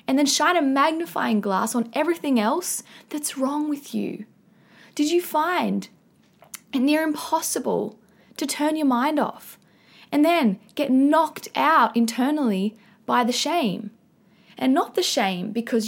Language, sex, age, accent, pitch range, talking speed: English, female, 10-29, Australian, 215-310 Hz, 145 wpm